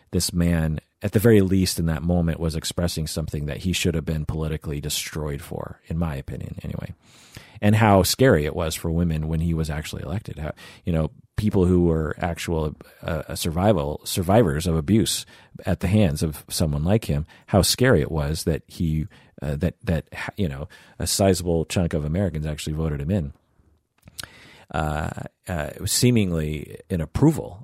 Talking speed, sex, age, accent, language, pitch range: 180 wpm, male, 40-59, American, English, 80-105 Hz